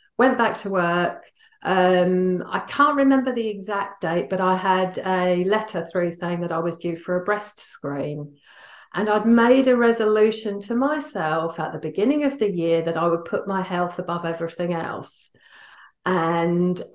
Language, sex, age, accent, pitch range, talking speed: English, female, 40-59, British, 170-215 Hz, 175 wpm